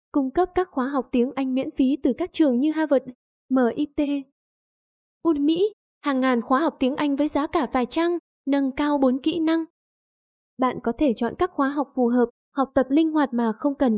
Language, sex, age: Vietnamese, female, 10-29